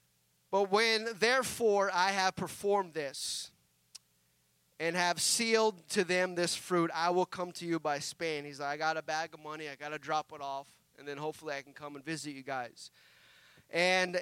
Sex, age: male, 30-49